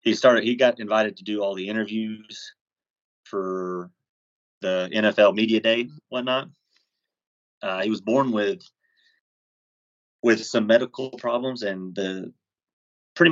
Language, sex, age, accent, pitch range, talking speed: English, male, 30-49, American, 95-105 Hz, 140 wpm